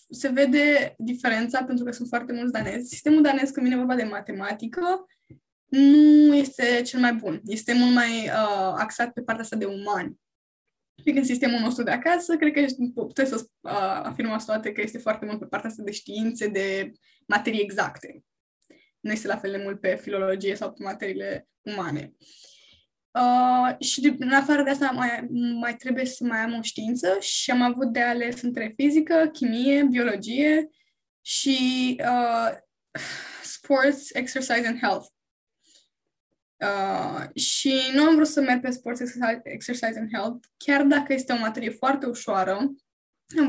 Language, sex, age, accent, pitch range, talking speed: Romanian, female, 10-29, native, 220-275 Hz, 155 wpm